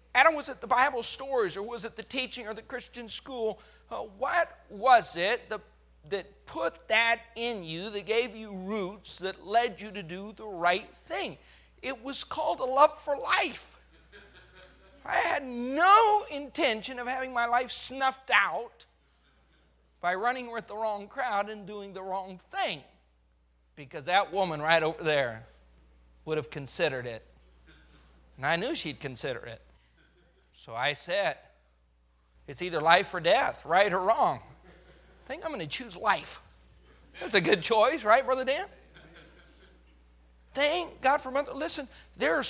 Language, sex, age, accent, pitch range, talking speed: English, male, 40-59, American, 175-250 Hz, 160 wpm